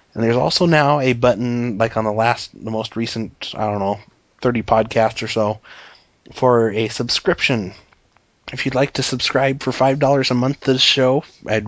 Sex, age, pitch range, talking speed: male, 20-39, 110-130 Hz, 185 wpm